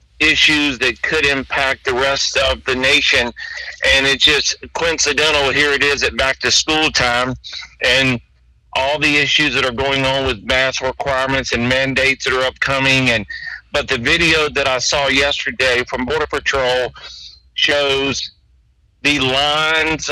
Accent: American